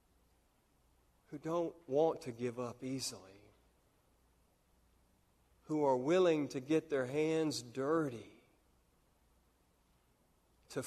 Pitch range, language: 115-155 Hz, English